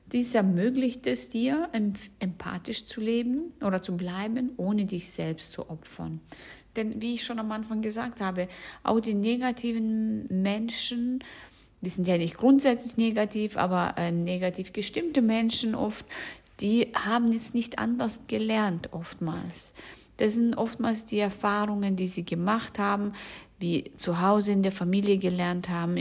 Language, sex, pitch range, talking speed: German, female, 185-235 Hz, 145 wpm